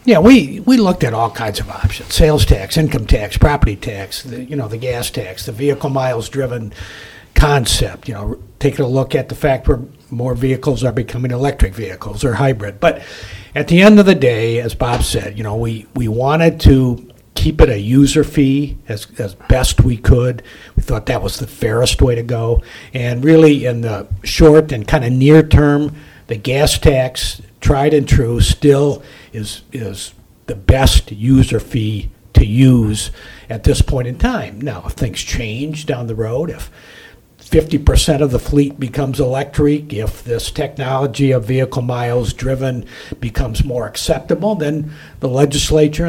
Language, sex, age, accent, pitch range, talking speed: English, male, 60-79, American, 115-145 Hz, 175 wpm